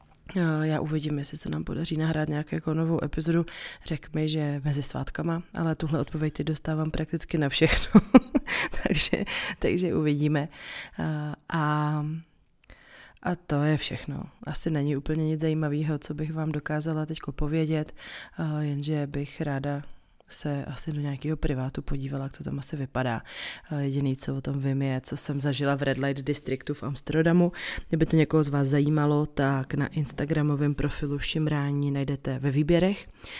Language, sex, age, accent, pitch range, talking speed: Czech, female, 20-39, native, 140-155 Hz, 145 wpm